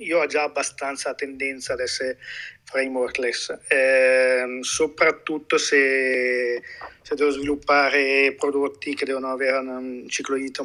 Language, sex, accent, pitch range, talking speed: Italian, male, native, 130-155 Hz, 125 wpm